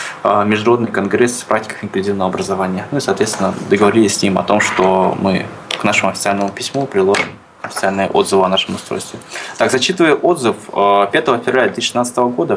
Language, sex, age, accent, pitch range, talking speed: Russian, male, 20-39, native, 100-125 Hz, 160 wpm